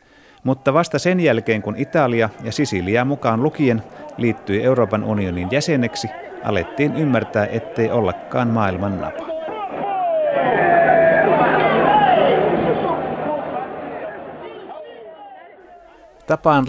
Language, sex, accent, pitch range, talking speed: Finnish, male, native, 100-130 Hz, 75 wpm